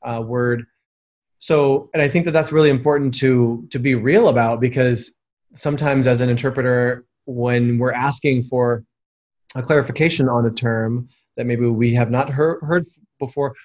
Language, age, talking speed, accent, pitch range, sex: English, 20-39, 160 wpm, American, 125-150 Hz, male